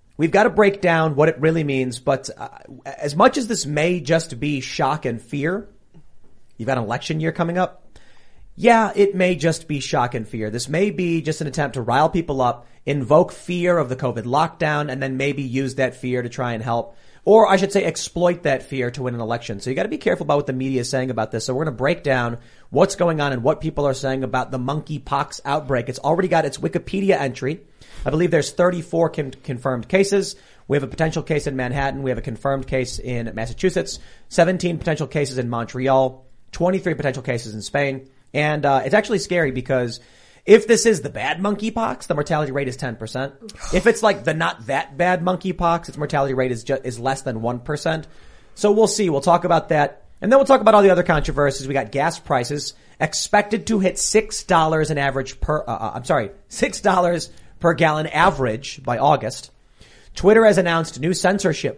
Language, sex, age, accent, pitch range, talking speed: English, male, 30-49, American, 130-175 Hz, 215 wpm